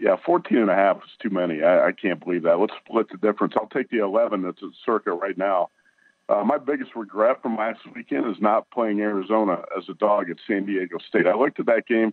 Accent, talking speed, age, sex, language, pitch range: American, 230 wpm, 50-69, male, English, 105-125 Hz